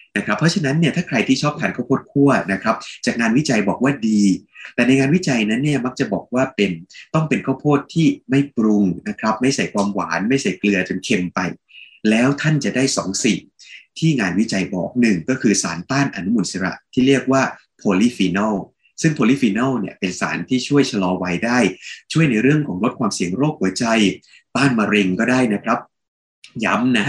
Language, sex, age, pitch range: Thai, male, 20-39, 100-140 Hz